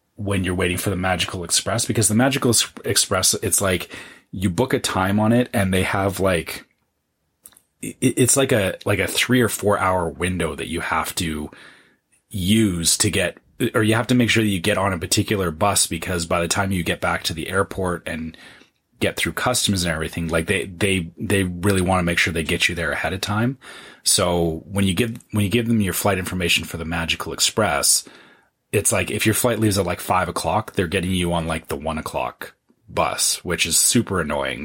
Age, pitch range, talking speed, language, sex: 30-49, 85-105 Hz, 215 wpm, English, male